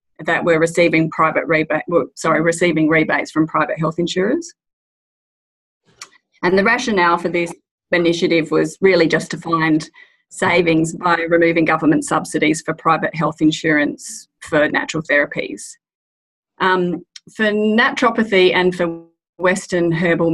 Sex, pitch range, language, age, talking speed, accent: female, 160-185 Hz, English, 30-49, 115 wpm, Australian